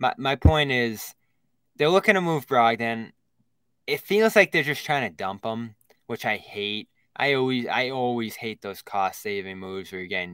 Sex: male